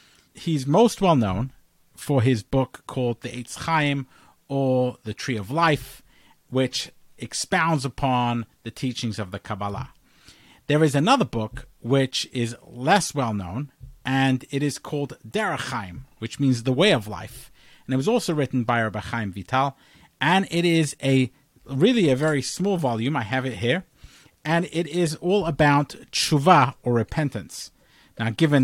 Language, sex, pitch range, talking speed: English, male, 120-155 Hz, 155 wpm